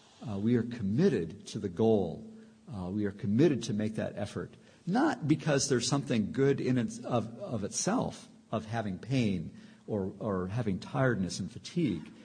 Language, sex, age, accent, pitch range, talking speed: English, male, 50-69, American, 110-155 Hz, 170 wpm